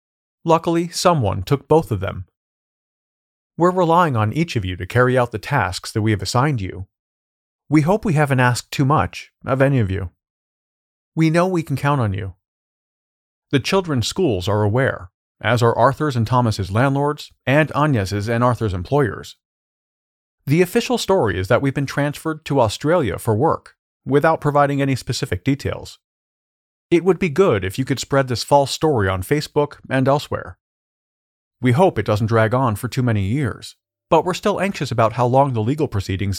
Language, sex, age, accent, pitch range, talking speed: English, male, 40-59, American, 105-145 Hz, 180 wpm